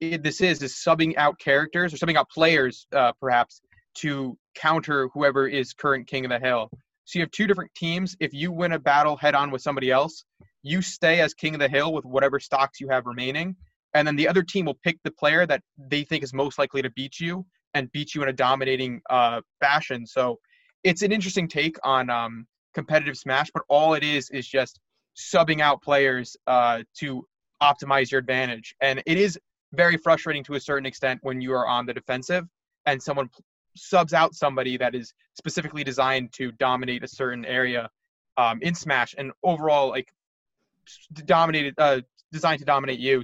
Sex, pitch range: male, 130-160 Hz